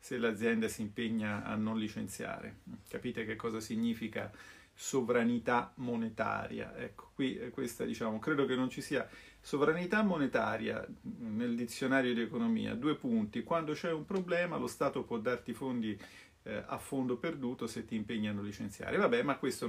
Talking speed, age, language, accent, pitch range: 160 wpm, 40-59, Italian, native, 110-150 Hz